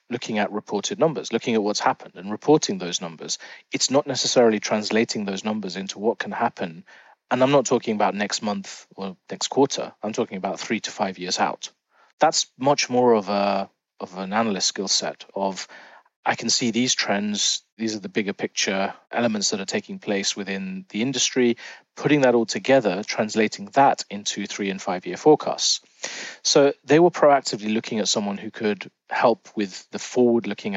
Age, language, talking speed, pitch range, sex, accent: 30-49, English, 180 wpm, 100-140 Hz, male, British